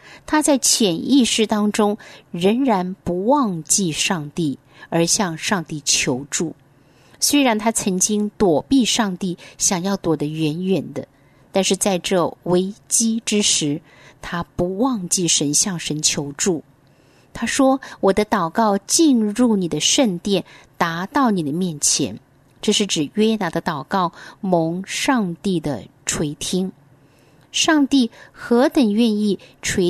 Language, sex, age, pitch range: Chinese, female, 50-69, 160-230 Hz